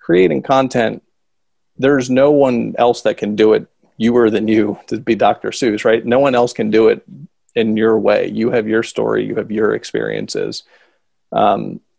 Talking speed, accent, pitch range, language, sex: 185 wpm, American, 110-135 Hz, English, male